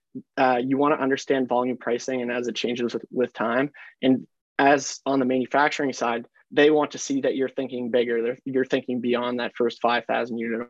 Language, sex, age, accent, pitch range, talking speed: English, male, 20-39, American, 120-135 Hz, 195 wpm